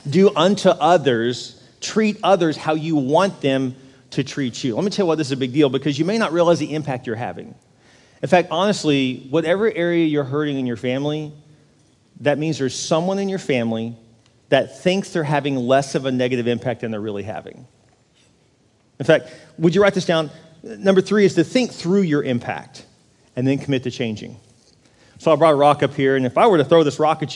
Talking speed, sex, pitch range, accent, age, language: 215 wpm, male, 130-190 Hz, American, 40-59, English